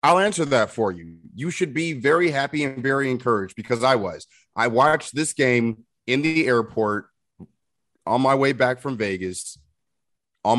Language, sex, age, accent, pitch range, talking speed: English, male, 30-49, American, 105-135 Hz, 170 wpm